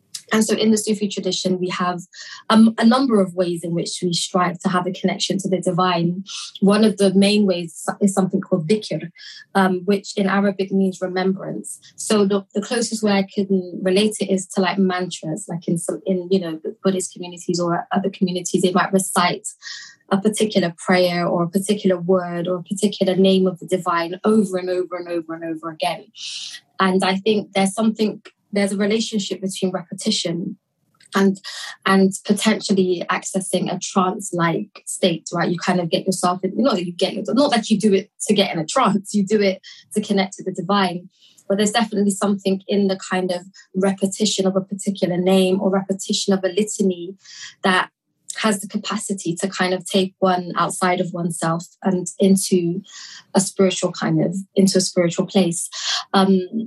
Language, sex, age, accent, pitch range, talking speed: English, female, 20-39, British, 180-205 Hz, 185 wpm